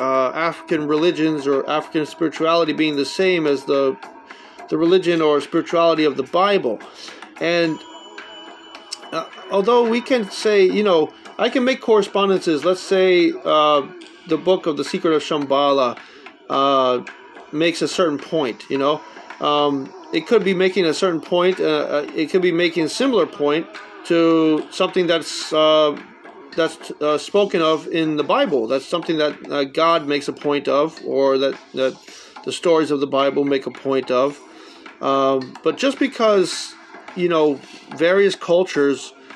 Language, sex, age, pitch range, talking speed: English, male, 40-59, 145-190 Hz, 160 wpm